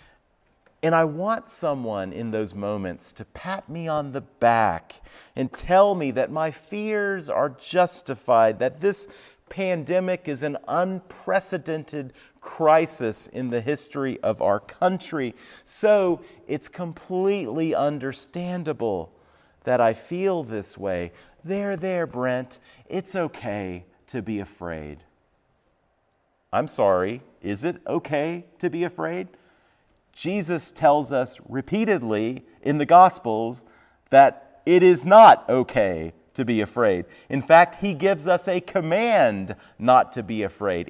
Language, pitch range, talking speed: English, 120-175 Hz, 125 wpm